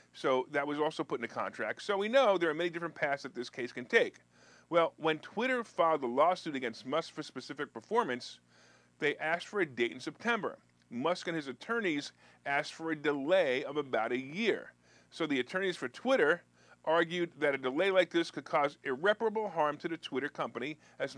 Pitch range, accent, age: 140-210 Hz, American, 40-59